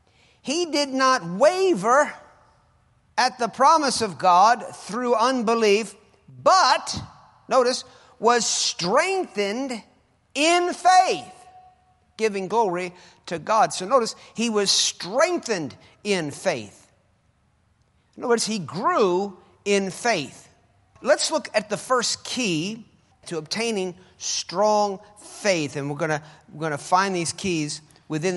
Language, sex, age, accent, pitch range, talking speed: English, male, 50-69, American, 175-245 Hz, 110 wpm